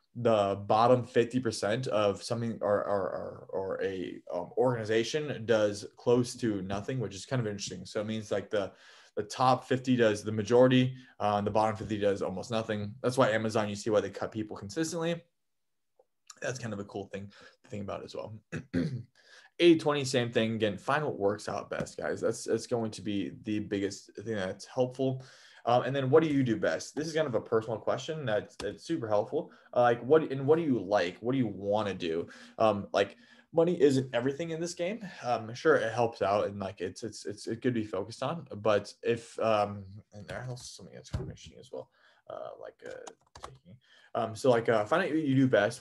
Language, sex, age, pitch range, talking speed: English, male, 20-39, 110-140 Hz, 210 wpm